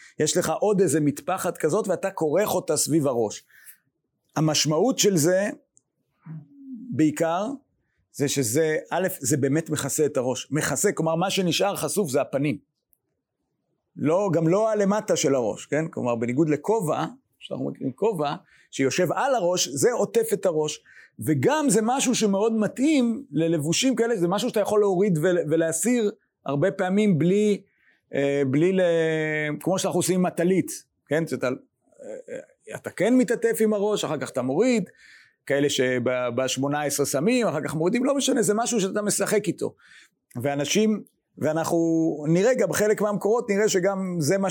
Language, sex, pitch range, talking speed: English, male, 155-205 Hz, 145 wpm